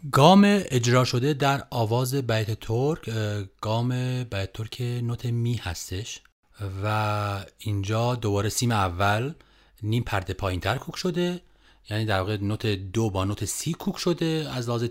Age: 30-49